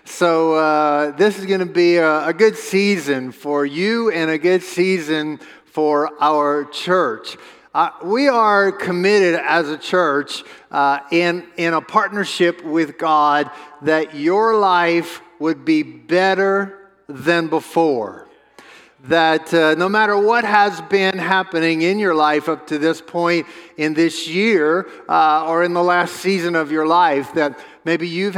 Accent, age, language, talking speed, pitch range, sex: American, 50-69, English, 150 wpm, 155-190 Hz, male